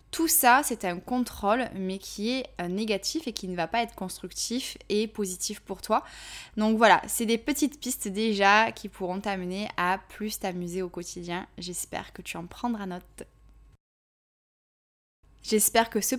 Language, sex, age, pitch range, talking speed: French, female, 20-39, 185-230 Hz, 165 wpm